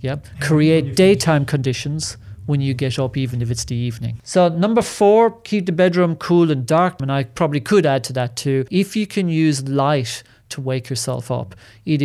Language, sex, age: English, male, 40-59